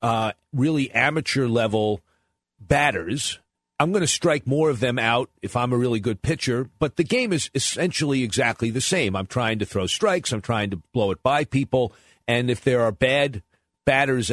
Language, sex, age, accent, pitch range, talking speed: English, male, 50-69, American, 120-170 Hz, 185 wpm